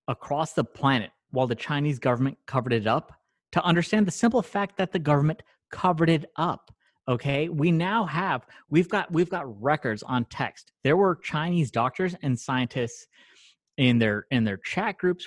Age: 30-49